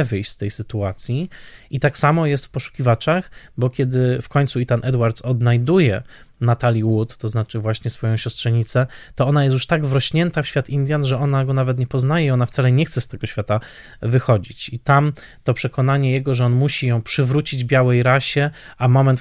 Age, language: 20-39, Polish